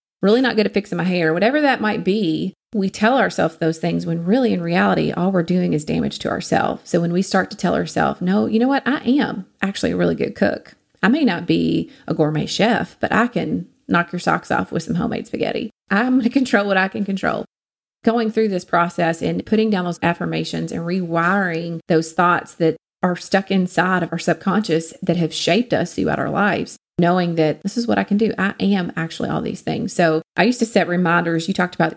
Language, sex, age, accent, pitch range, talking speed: English, female, 30-49, American, 160-200 Hz, 225 wpm